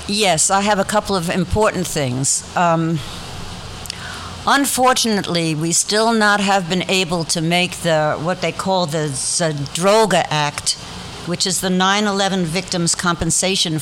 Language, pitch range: English, 160-190 Hz